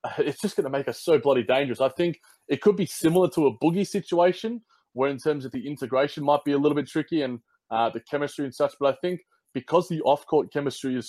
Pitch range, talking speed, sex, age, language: 125-145 Hz, 245 wpm, male, 20-39, English